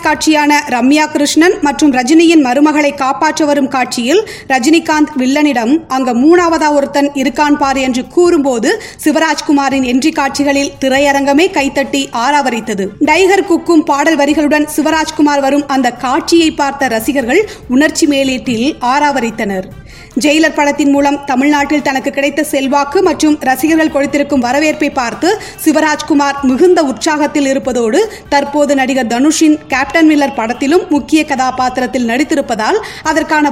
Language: Tamil